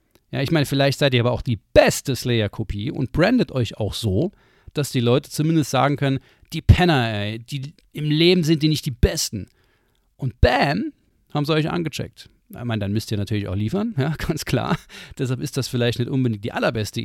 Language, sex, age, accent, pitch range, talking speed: German, male, 40-59, German, 120-155 Hz, 200 wpm